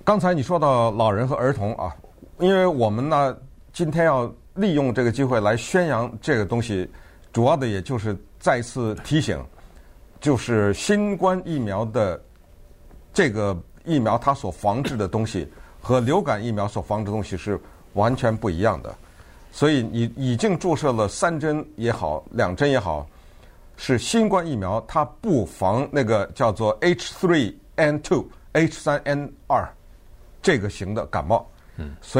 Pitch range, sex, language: 95-145 Hz, male, Chinese